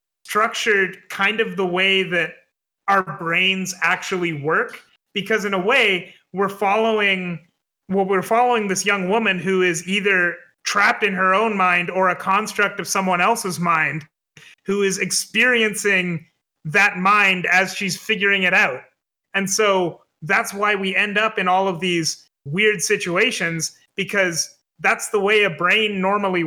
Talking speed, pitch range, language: 150 wpm, 180-205 Hz, English